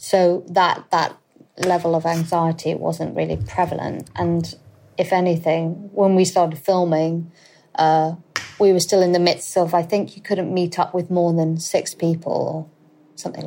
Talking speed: 165 wpm